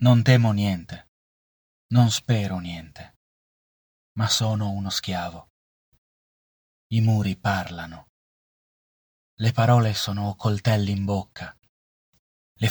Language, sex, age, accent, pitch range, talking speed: Italian, male, 30-49, native, 90-115 Hz, 95 wpm